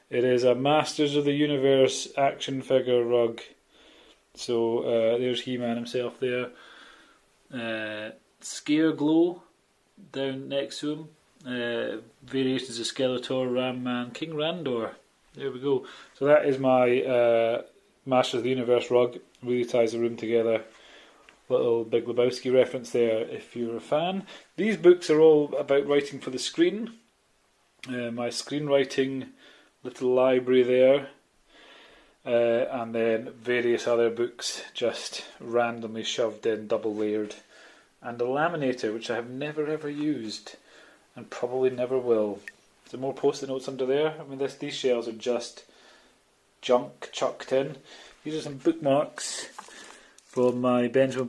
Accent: British